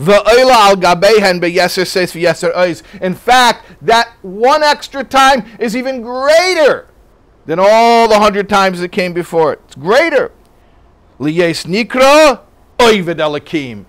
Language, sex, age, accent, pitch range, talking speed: English, male, 50-69, American, 155-230 Hz, 90 wpm